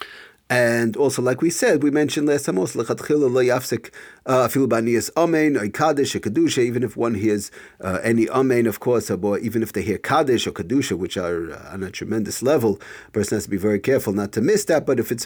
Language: English